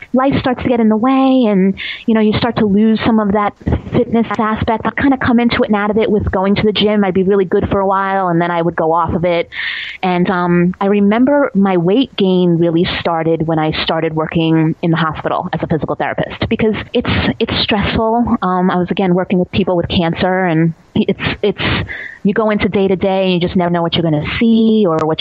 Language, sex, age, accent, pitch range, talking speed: English, female, 30-49, American, 165-200 Hz, 240 wpm